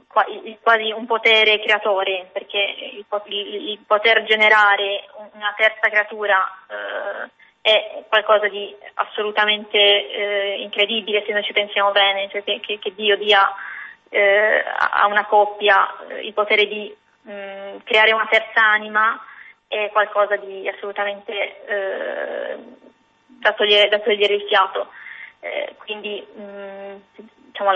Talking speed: 120 wpm